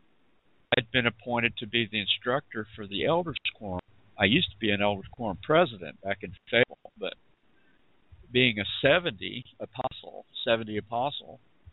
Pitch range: 100-125 Hz